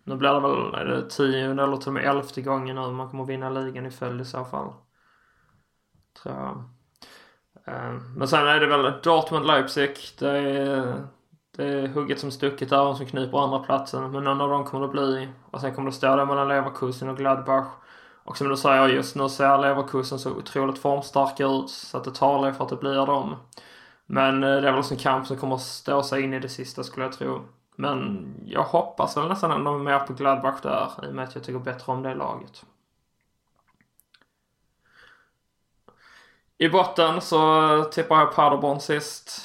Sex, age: male, 20-39